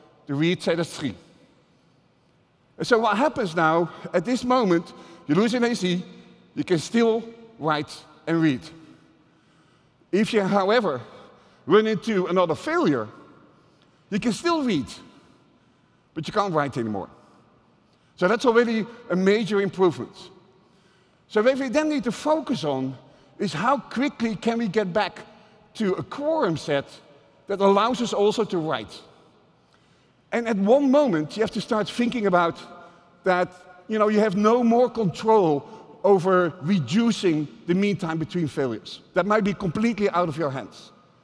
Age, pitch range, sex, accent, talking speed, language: 50-69, 170-230 Hz, male, Dutch, 150 wpm, English